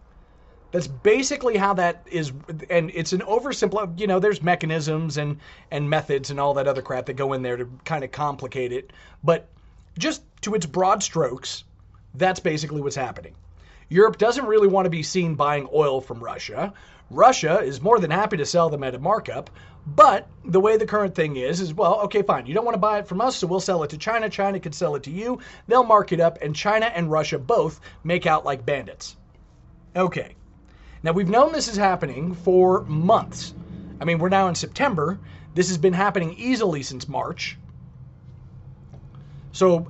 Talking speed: 195 wpm